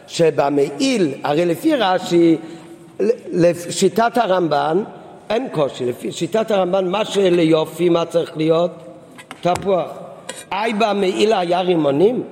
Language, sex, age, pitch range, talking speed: Hebrew, male, 50-69, 170-215 Hz, 100 wpm